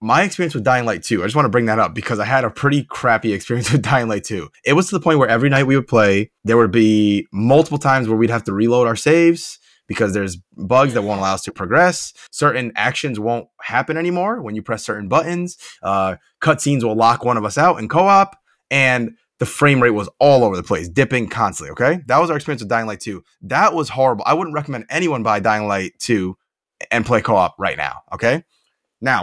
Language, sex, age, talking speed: English, male, 20-39, 235 wpm